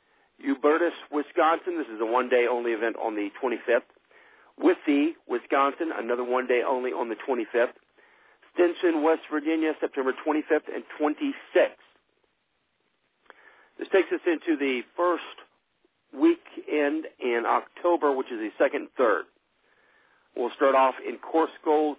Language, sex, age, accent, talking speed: English, male, 50-69, American, 120 wpm